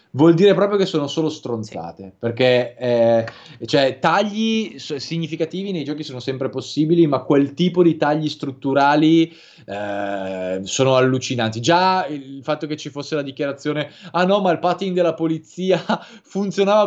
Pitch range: 120-170 Hz